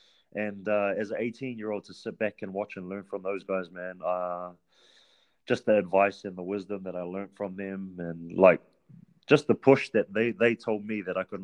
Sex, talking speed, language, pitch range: male, 215 wpm, English, 95-115 Hz